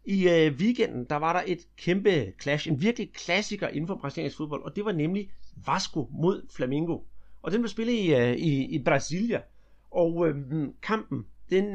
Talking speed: 185 wpm